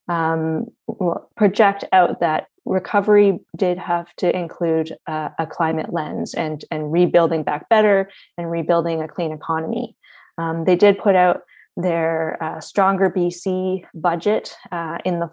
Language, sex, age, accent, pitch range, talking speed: English, female, 20-39, American, 165-190 Hz, 140 wpm